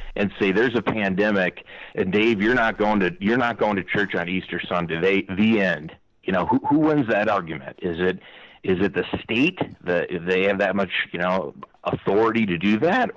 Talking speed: 205 wpm